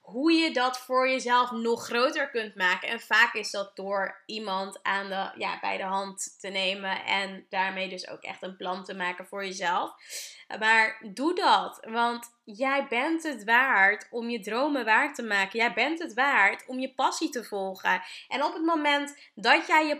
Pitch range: 200-270 Hz